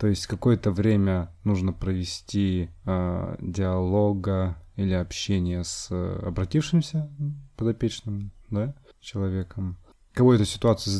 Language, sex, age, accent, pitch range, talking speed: Russian, male, 20-39, native, 90-115 Hz, 95 wpm